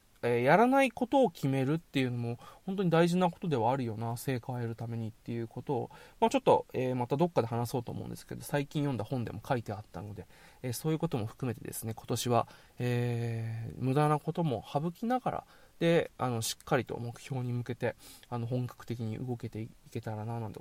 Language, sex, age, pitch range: Japanese, male, 20-39, 115-145 Hz